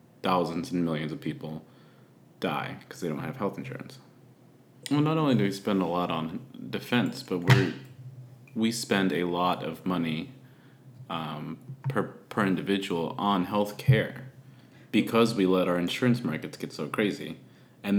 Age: 30-49